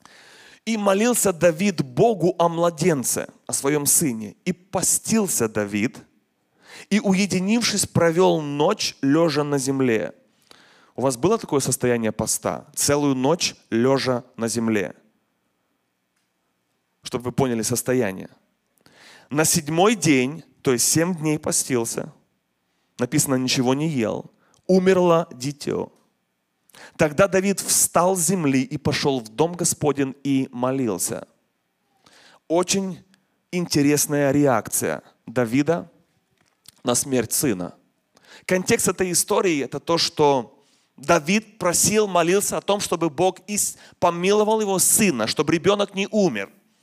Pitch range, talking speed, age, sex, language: 130-185 Hz, 110 wpm, 30-49, male, Russian